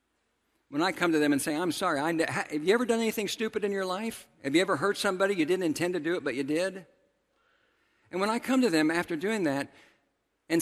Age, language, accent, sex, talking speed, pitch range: 50-69, English, American, male, 235 wpm, 135-185 Hz